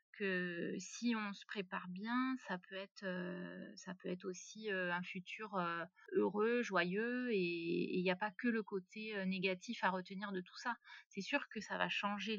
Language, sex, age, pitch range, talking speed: French, female, 30-49, 180-210 Hz, 180 wpm